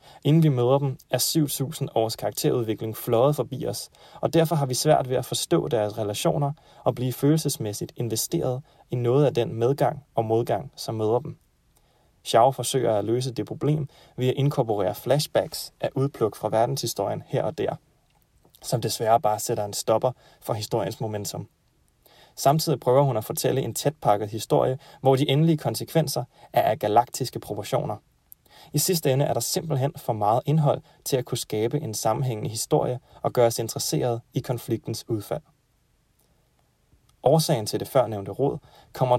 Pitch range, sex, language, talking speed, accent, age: 115-145 Hz, male, Danish, 160 wpm, native, 30-49